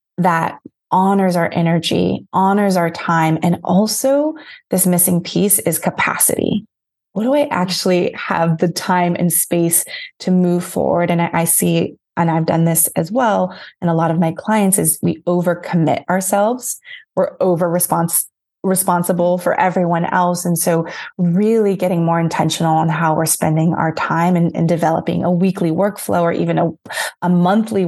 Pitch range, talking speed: 165-185 Hz, 165 wpm